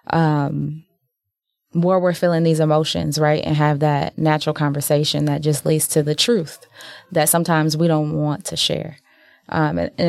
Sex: female